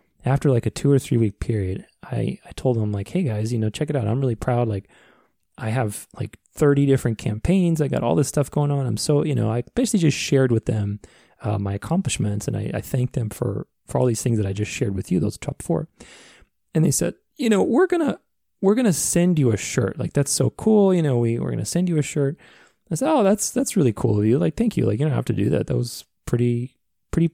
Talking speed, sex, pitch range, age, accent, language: 265 wpm, male, 105-145 Hz, 20-39, American, English